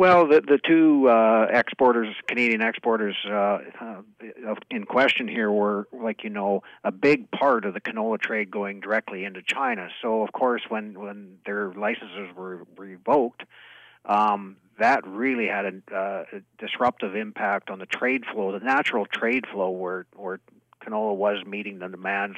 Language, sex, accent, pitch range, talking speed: English, male, American, 100-110 Hz, 165 wpm